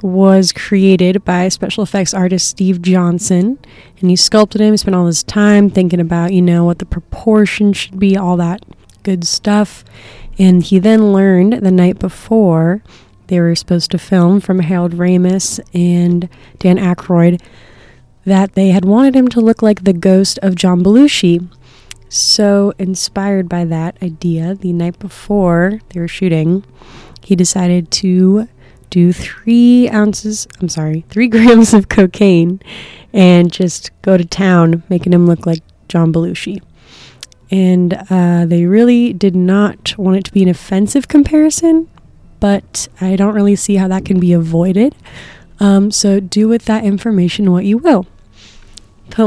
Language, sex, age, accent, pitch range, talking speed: English, female, 20-39, American, 175-205 Hz, 155 wpm